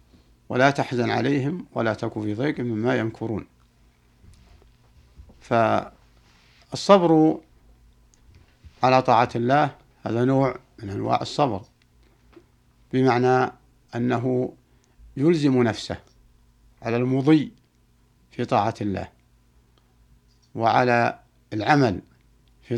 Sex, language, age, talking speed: male, Arabic, 60-79, 80 wpm